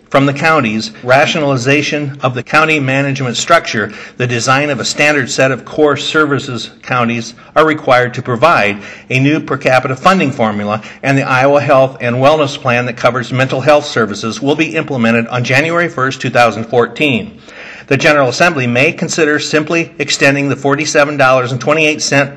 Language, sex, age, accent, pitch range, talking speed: English, male, 50-69, American, 125-150 Hz, 155 wpm